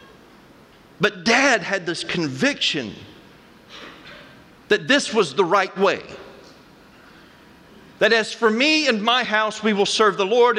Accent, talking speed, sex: American, 130 wpm, male